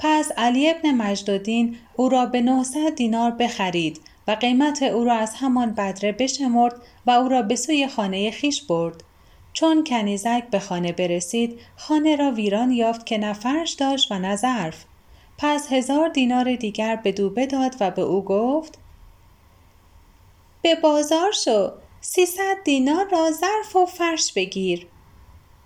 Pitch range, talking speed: 205-310 Hz, 145 wpm